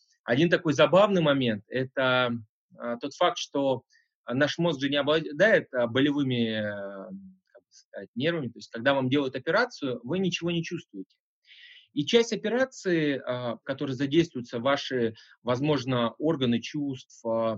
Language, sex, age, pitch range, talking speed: Russian, male, 30-49, 115-155 Hz, 125 wpm